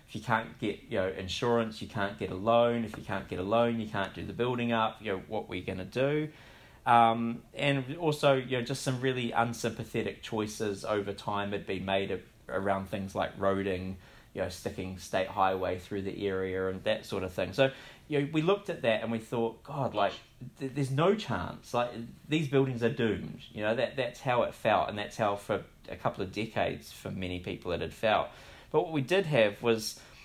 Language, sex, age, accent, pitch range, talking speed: English, male, 20-39, Australian, 100-125 Hz, 220 wpm